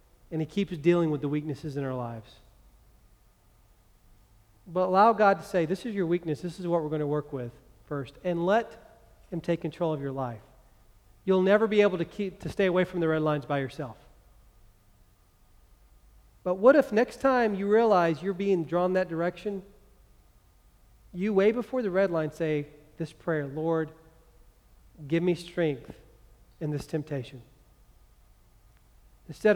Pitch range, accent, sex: 120-170 Hz, American, male